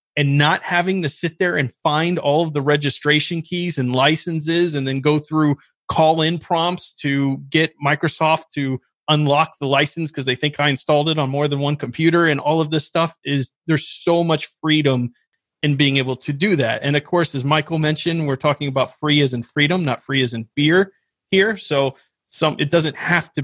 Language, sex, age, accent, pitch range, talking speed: English, male, 30-49, American, 135-160 Hz, 205 wpm